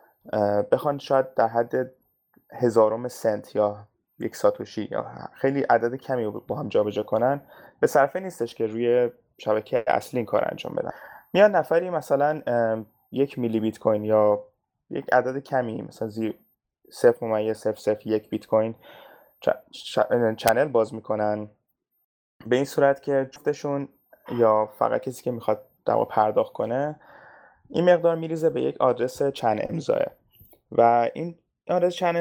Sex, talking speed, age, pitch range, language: male, 140 wpm, 20-39, 110-145 Hz, Persian